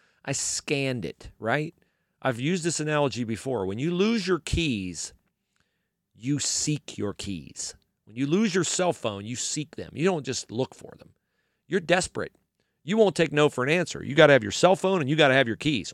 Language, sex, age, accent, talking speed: English, male, 40-59, American, 210 wpm